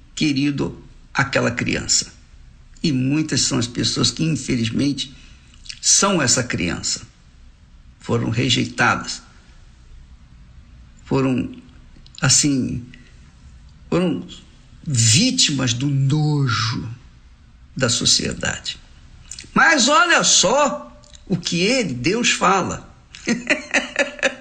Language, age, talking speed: Portuguese, 60-79, 75 wpm